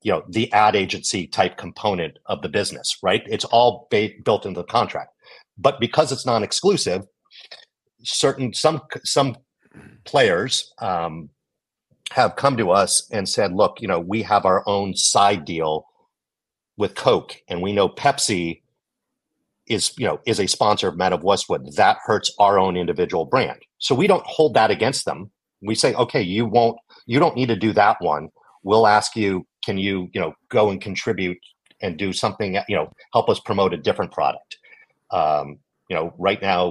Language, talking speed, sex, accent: English, 180 wpm, male, American